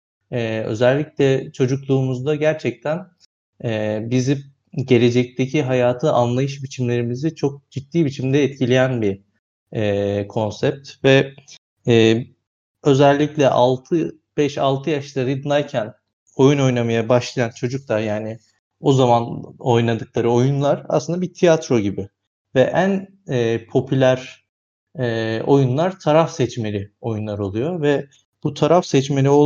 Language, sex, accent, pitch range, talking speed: Turkish, male, native, 120-155 Hz, 100 wpm